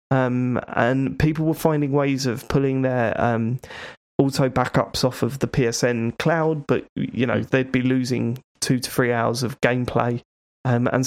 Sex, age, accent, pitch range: male, 20-39, British, 125-150 Hz